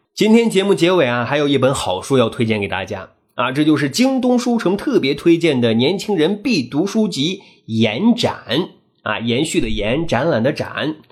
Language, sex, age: Chinese, male, 30-49